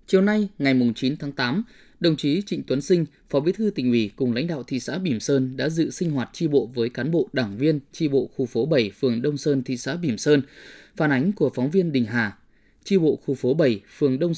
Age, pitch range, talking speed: 20-39, 130-170 Hz, 250 wpm